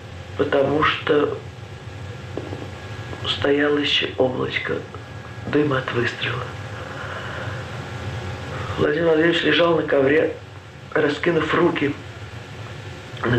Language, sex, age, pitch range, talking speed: Russian, male, 50-69, 120-155 Hz, 70 wpm